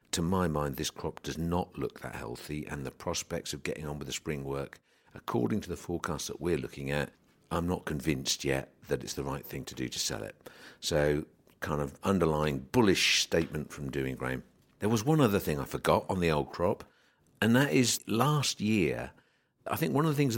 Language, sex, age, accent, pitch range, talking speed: English, male, 50-69, British, 75-100 Hz, 215 wpm